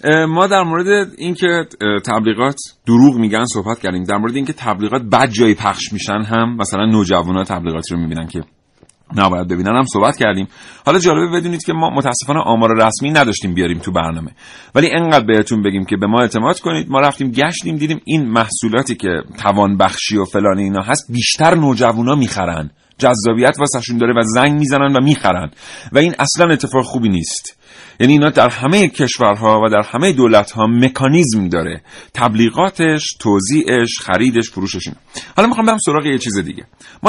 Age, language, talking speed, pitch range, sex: 40-59, Persian, 165 wpm, 100-150 Hz, male